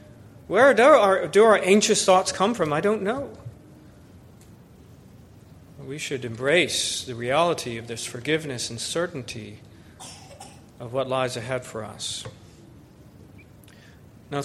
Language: English